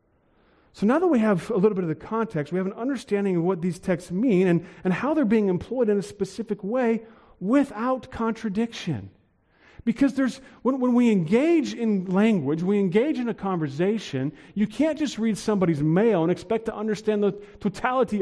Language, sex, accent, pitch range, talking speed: English, male, American, 185-245 Hz, 190 wpm